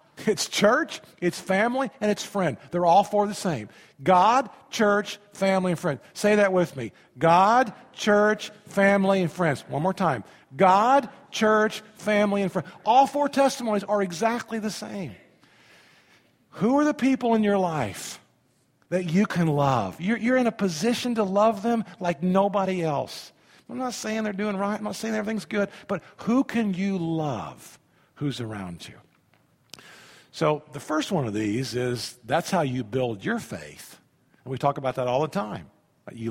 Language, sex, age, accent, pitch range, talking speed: English, male, 50-69, American, 130-210 Hz, 170 wpm